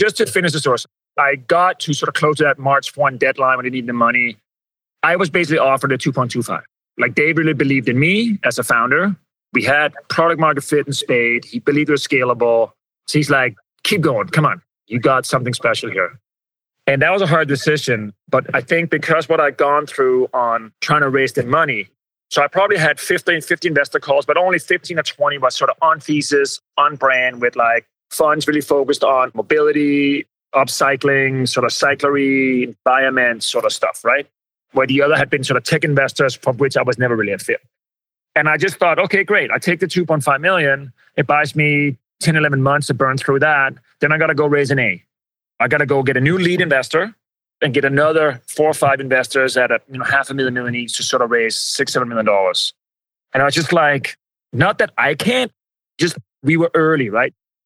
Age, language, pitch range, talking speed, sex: 30-49, English, 130-155 Hz, 215 wpm, male